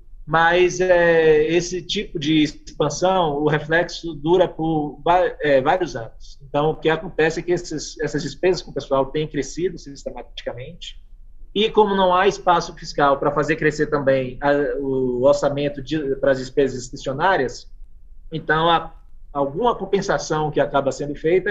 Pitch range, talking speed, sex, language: 135-165 Hz, 150 wpm, male, Portuguese